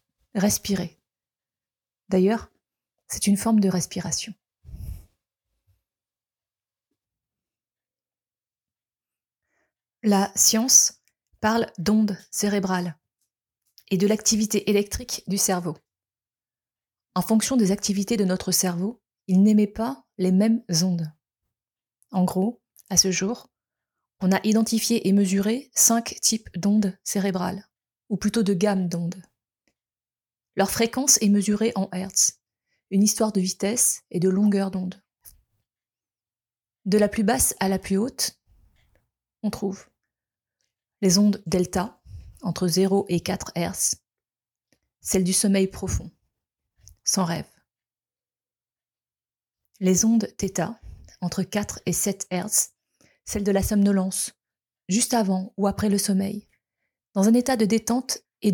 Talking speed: 115 wpm